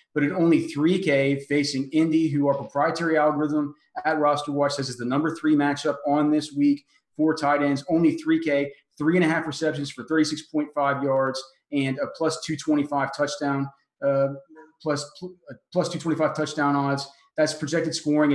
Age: 30-49